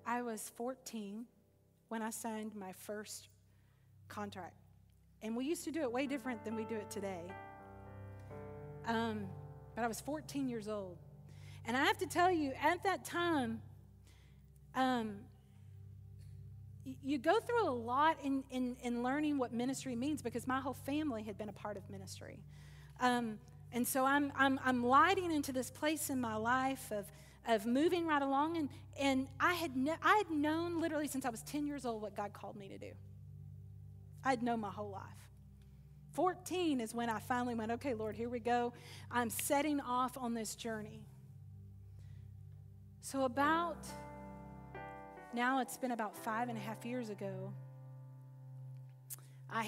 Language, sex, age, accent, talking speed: English, female, 40-59, American, 165 wpm